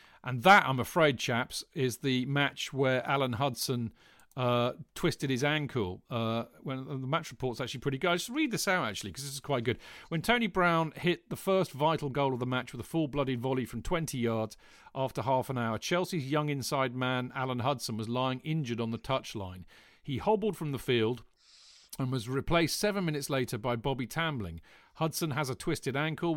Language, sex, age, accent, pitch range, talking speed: English, male, 40-59, British, 120-160 Hz, 195 wpm